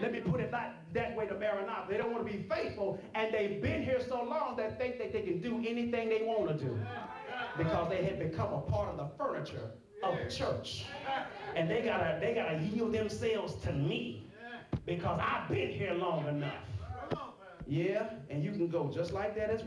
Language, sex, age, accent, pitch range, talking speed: English, male, 30-49, American, 200-270 Hz, 205 wpm